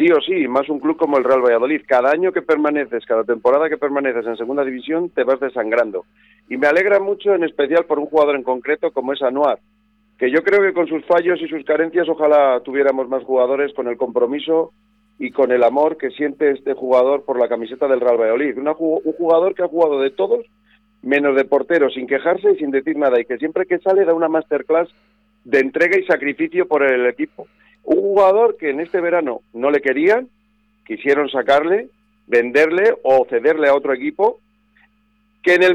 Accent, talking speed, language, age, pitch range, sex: Spanish, 200 wpm, Spanish, 50-69, 140-210 Hz, male